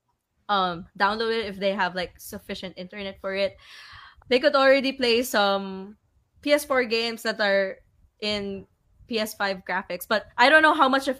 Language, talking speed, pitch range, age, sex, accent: English, 160 wpm, 195-245 Hz, 20-39, female, Filipino